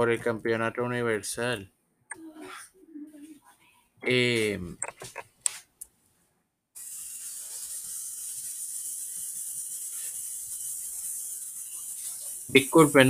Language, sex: Spanish, male